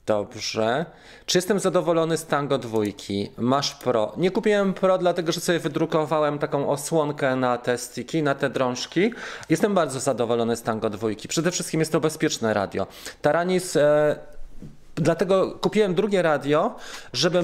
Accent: native